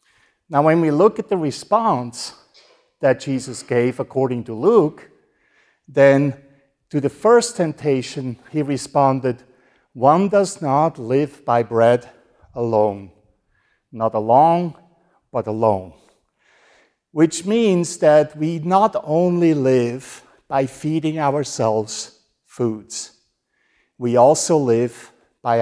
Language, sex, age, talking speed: English, male, 50-69, 110 wpm